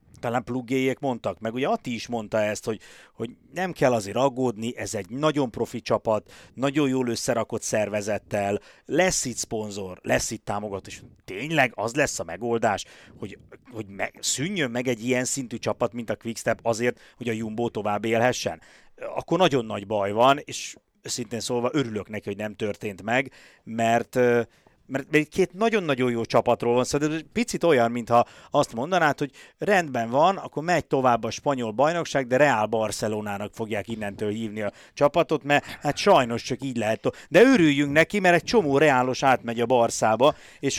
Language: Hungarian